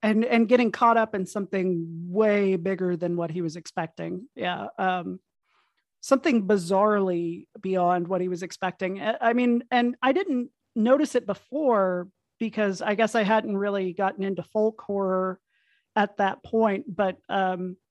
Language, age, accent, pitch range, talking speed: English, 40-59, American, 190-235 Hz, 155 wpm